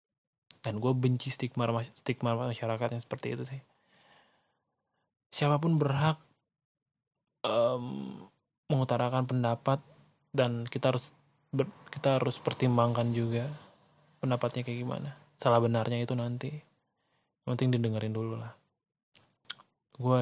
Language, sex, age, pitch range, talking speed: Indonesian, male, 20-39, 120-140 Hz, 105 wpm